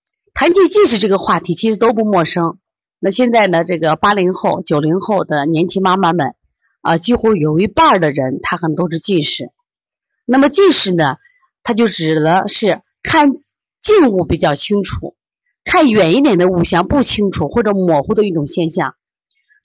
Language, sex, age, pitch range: Chinese, female, 30-49, 170-240 Hz